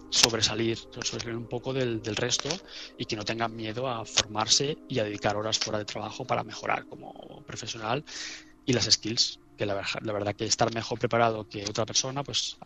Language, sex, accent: Spanish, male, Spanish